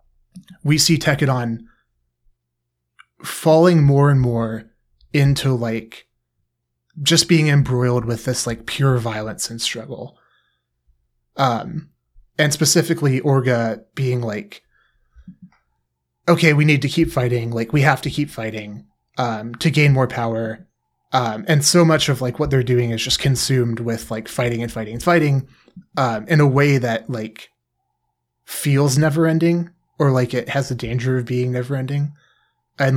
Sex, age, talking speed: male, 30-49, 145 wpm